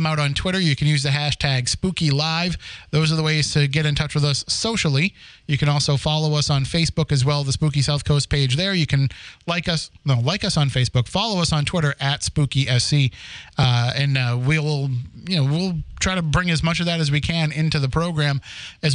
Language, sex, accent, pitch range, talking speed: English, male, American, 140-165 Hz, 230 wpm